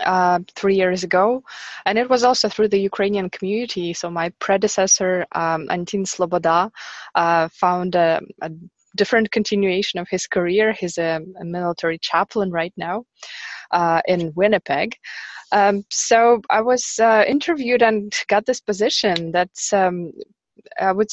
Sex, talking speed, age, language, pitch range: female, 145 wpm, 20-39, English, 170-205 Hz